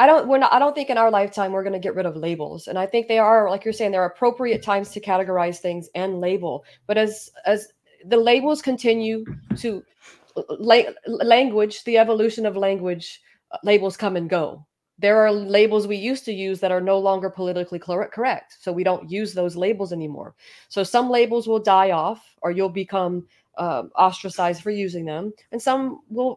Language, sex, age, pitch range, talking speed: English, female, 30-49, 190-240 Hz, 200 wpm